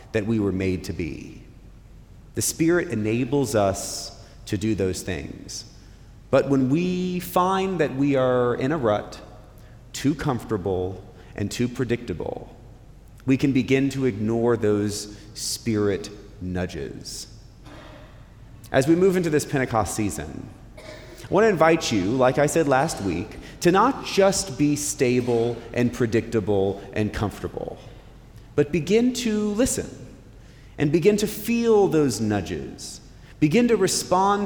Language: English